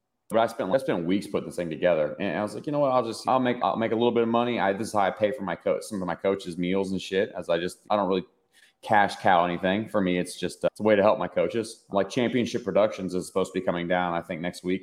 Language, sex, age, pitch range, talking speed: English, male, 30-49, 90-110 Hz, 315 wpm